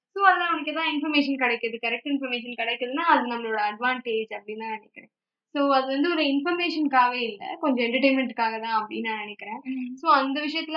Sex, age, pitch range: female, 10-29, 235-300 Hz